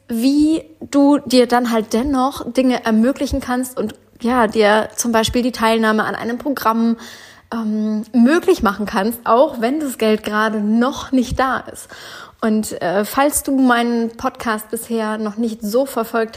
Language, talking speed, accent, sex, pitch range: German, 155 wpm, German, female, 220-250 Hz